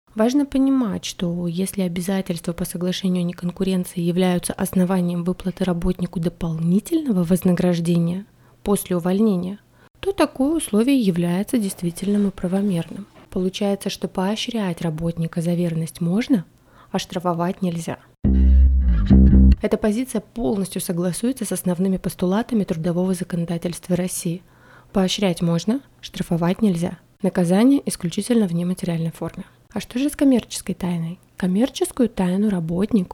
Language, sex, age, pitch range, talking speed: Russian, female, 20-39, 180-220 Hz, 110 wpm